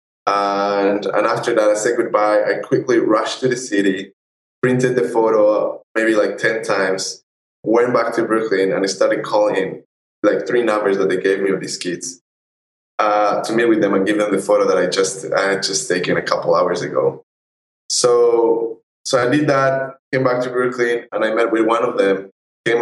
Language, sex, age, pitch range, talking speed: English, male, 10-29, 95-125 Hz, 200 wpm